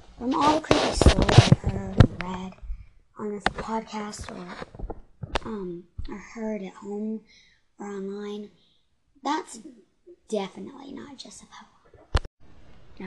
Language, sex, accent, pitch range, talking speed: English, male, American, 180-220 Hz, 120 wpm